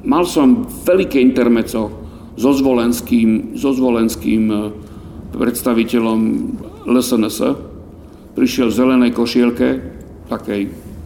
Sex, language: male, Slovak